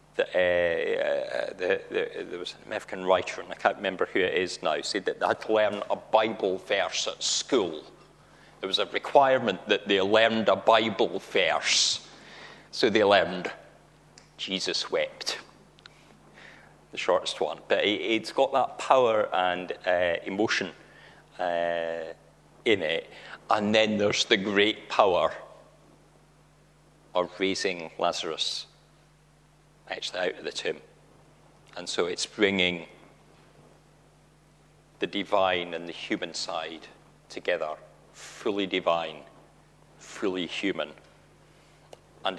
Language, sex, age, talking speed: English, male, 40-59, 120 wpm